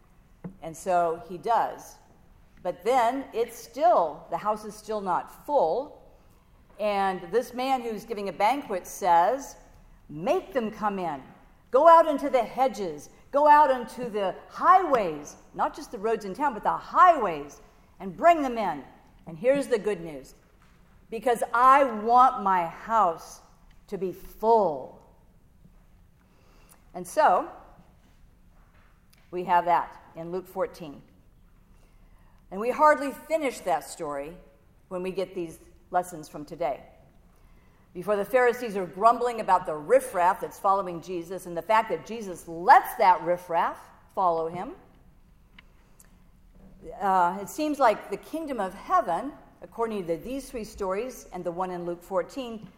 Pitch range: 175-255 Hz